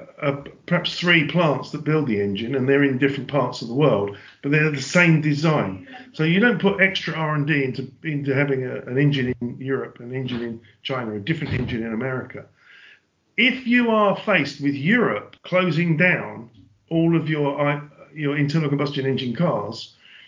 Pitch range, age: 130-170 Hz, 50-69